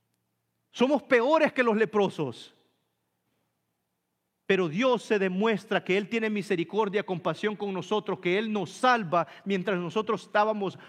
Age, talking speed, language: 40-59, 125 wpm, Spanish